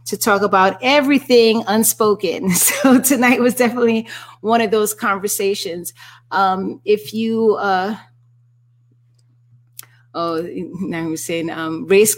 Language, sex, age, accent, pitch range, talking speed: English, female, 30-49, American, 175-215 Hz, 115 wpm